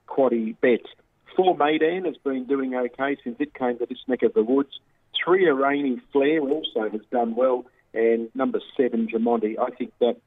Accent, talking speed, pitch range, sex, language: Australian, 185 wpm, 115-150 Hz, male, English